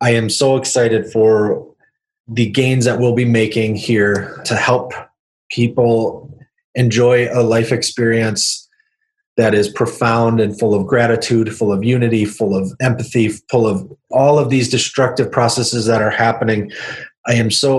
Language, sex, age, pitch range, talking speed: English, male, 30-49, 110-125 Hz, 150 wpm